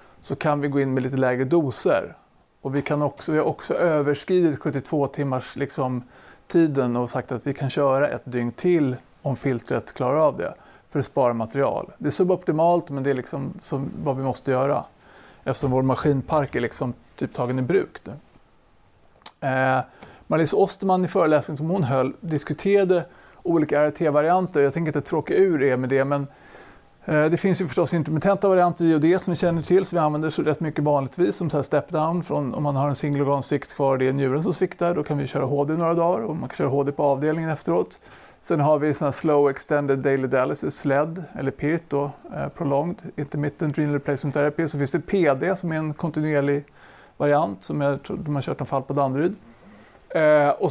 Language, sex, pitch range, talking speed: Swedish, male, 135-165 Hz, 200 wpm